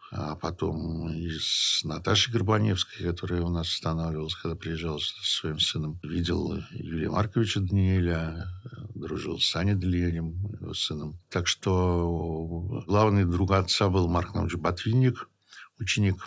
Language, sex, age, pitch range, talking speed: Russian, male, 60-79, 85-105 Hz, 120 wpm